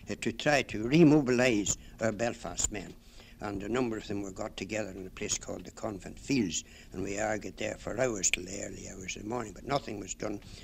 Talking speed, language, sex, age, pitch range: 220 wpm, English, male, 60-79, 95-115 Hz